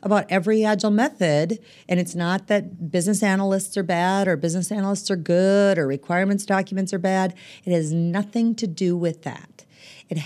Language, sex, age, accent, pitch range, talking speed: English, female, 40-59, American, 160-200 Hz, 175 wpm